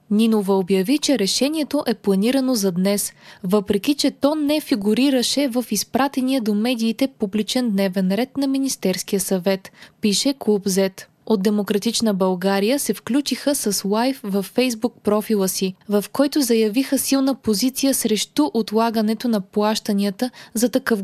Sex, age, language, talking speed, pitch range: female, 20-39, Bulgarian, 135 wpm, 200-260 Hz